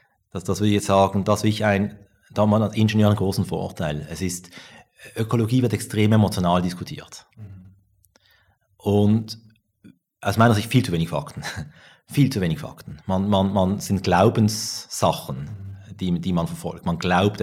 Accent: Austrian